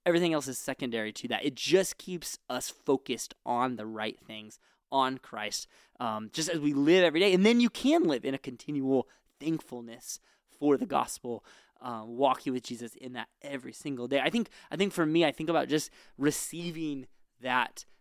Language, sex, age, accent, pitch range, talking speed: English, male, 20-39, American, 125-180 Hz, 190 wpm